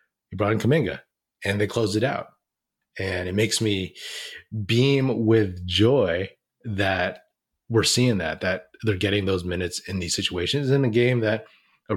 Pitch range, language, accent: 90-115 Hz, English, American